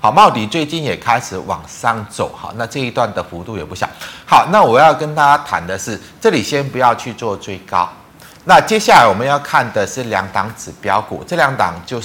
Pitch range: 95-140 Hz